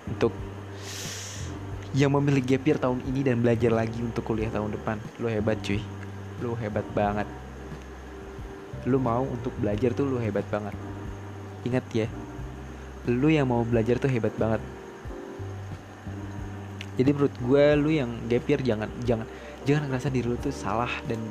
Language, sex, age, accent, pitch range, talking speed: Indonesian, male, 20-39, native, 100-130 Hz, 145 wpm